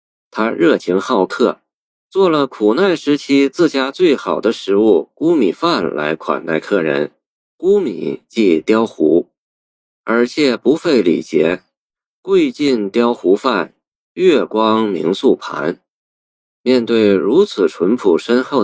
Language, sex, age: Chinese, male, 50-69